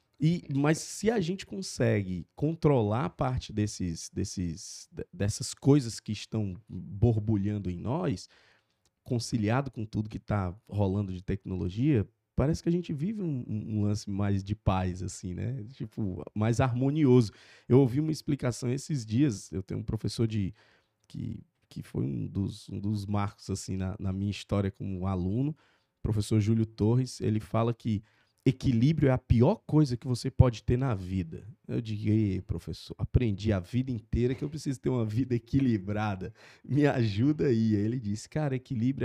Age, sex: 20-39, male